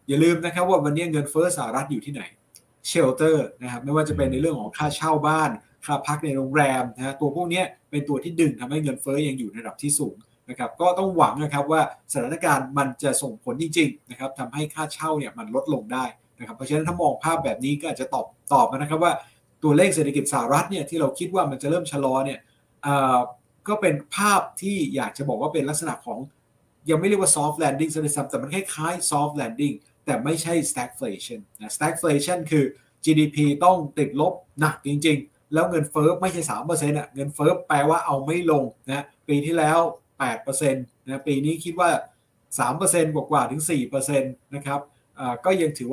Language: Thai